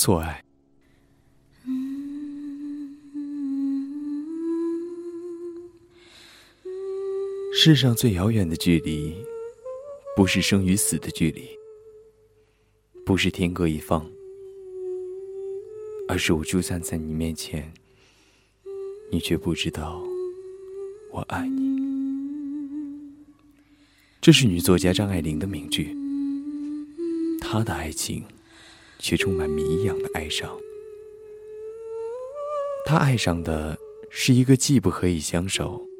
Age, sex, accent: 20-39, male, native